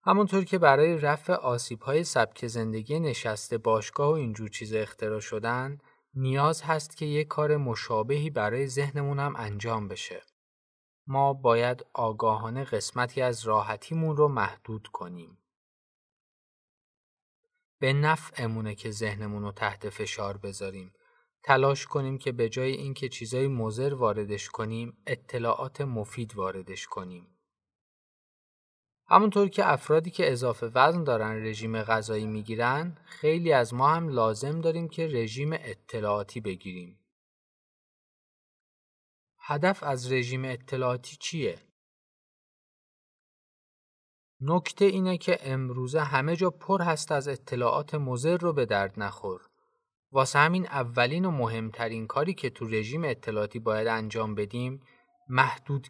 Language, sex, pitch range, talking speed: Persian, male, 110-150 Hz, 120 wpm